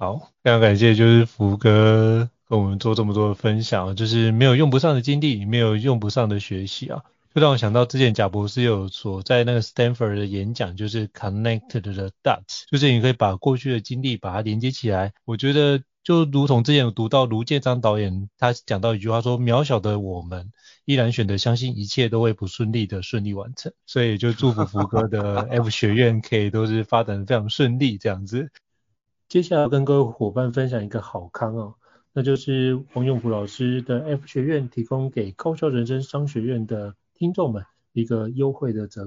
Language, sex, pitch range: Chinese, male, 110-130 Hz